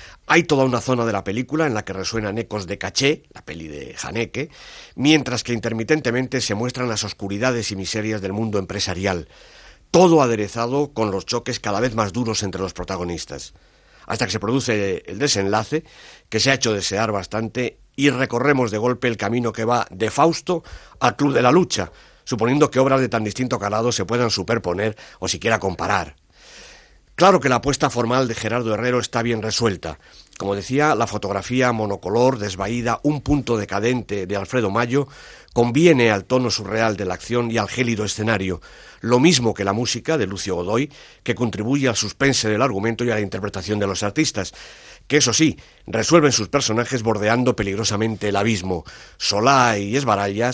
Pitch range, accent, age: 100-125 Hz, Spanish, 60-79